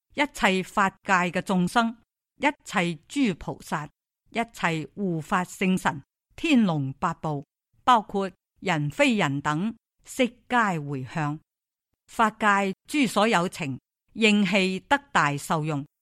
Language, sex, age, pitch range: Chinese, female, 50-69, 165-225 Hz